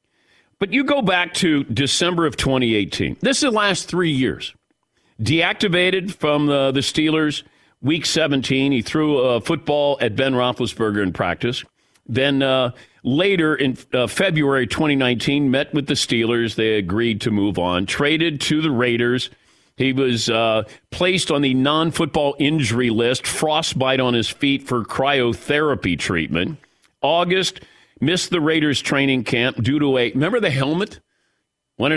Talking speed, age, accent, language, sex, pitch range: 150 wpm, 50-69, American, English, male, 120-155 Hz